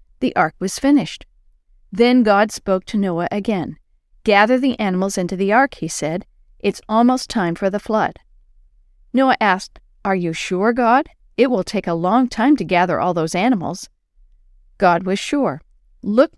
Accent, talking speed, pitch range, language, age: American, 165 wpm, 180-235 Hz, English, 40-59